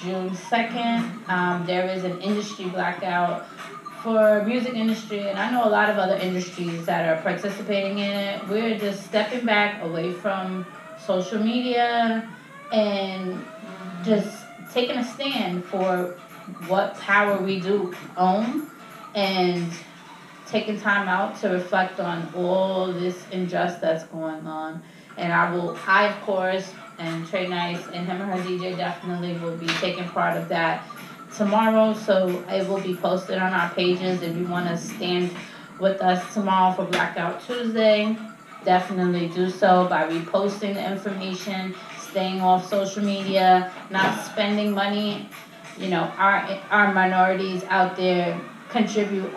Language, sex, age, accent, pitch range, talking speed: English, female, 20-39, American, 180-205 Hz, 145 wpm